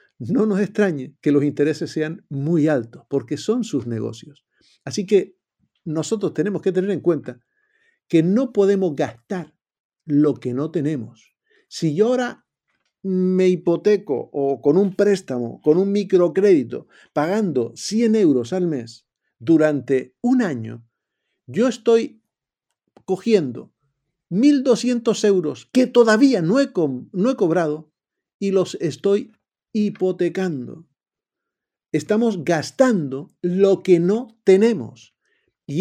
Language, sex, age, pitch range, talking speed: Spanish, male, 50-69, 155-210 Hz, 120 wpm